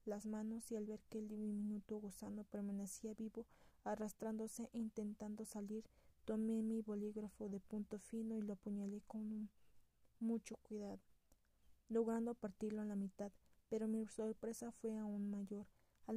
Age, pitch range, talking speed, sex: 20-39, 210-225 Hz, 145 wpm, female